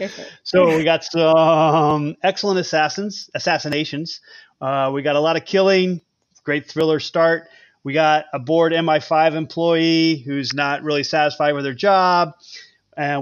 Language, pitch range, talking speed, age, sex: English, 140-165 Hz, 140 wpm, 30-49, male